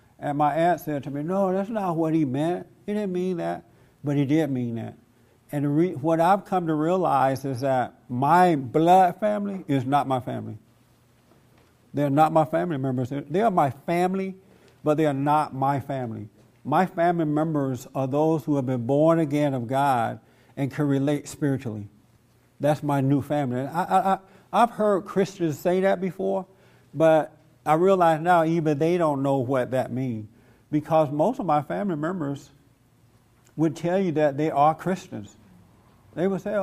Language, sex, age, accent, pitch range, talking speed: English, male, 60-79, American, 125-165 Hz, 170 wpm